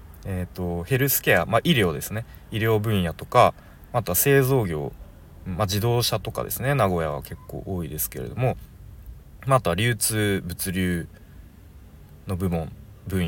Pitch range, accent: 90-125 Hz, native